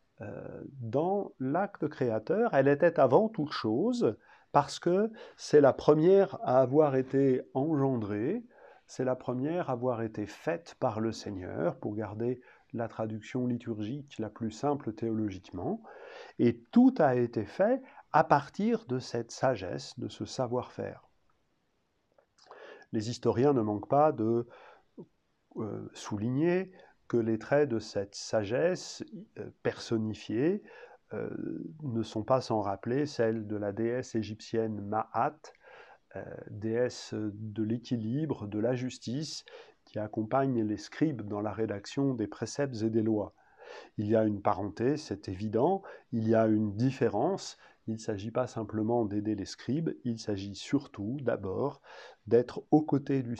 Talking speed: 135 wpm